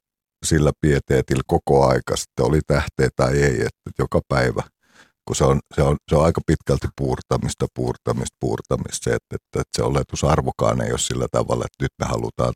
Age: 50-69